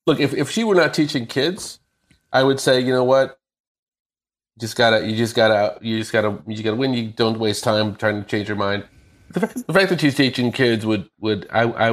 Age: 40-59